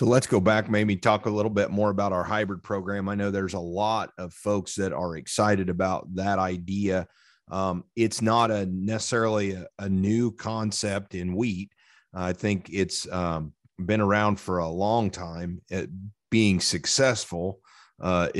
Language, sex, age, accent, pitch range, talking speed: English, male, 40-59, American, 95-105 Hz, 165 wpm